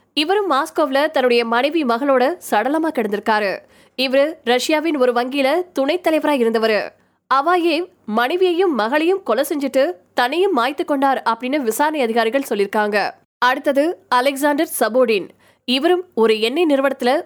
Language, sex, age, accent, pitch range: Tamil, female, 20-39, native, 235-300 Hz